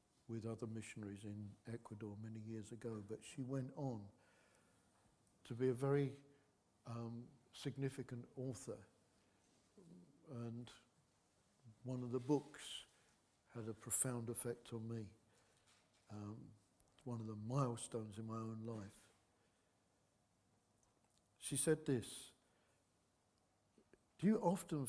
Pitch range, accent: 110-145 Hz, British